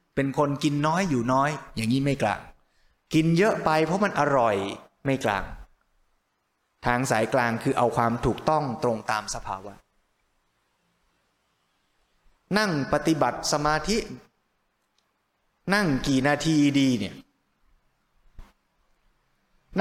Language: Thai